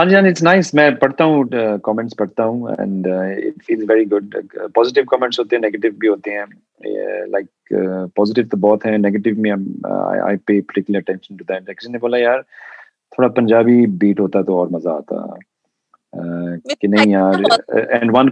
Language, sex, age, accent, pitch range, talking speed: Hindi, male, 30-49, native, 100-125 Hz, 35 wpm